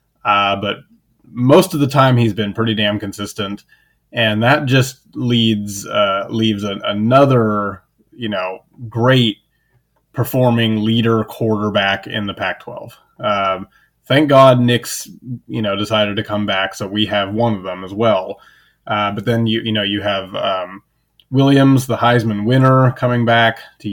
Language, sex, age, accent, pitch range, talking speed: English, male, 20-39, American, 105-130 Hz, 155 wpm